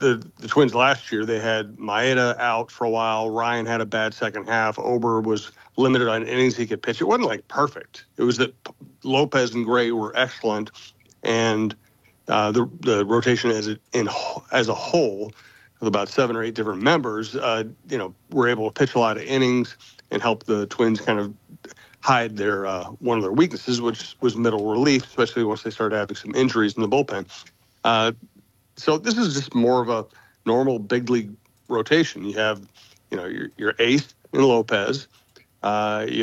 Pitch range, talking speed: 110-125 Hz, 195 wpm